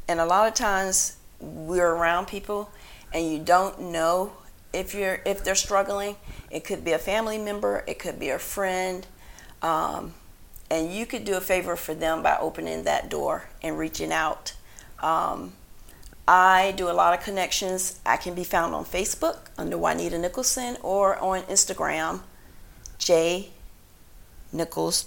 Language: English